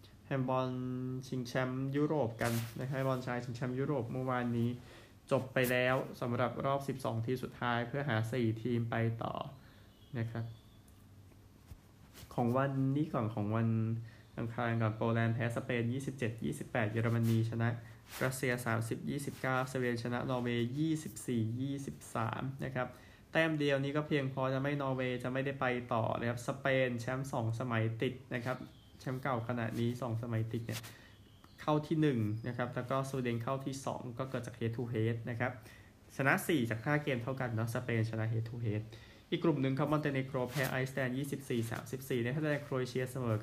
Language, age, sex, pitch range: Thai, 20-39, male, 115-130 Hz